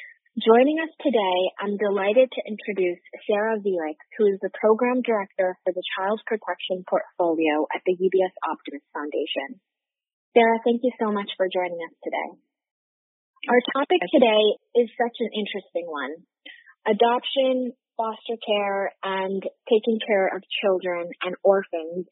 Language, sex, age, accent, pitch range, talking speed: English, female, 30-49, American, 190-235 Hz, 140 wpm